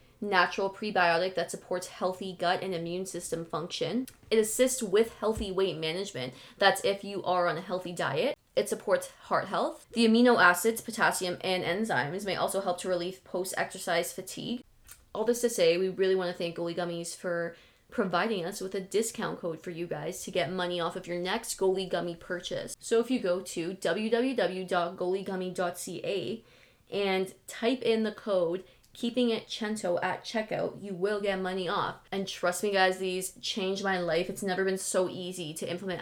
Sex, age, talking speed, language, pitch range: female, 20-39, 180 wpm, English, 175-205 Hz